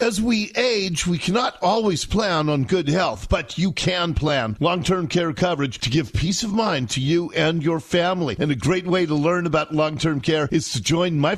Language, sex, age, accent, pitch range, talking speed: English, male, 50-69, American, 150-195 Hz, 210 wpm